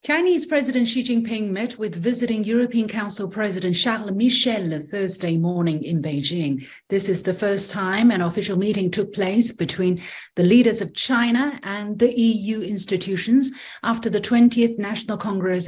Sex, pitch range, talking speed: female, 175-235 Hz, 155 wpm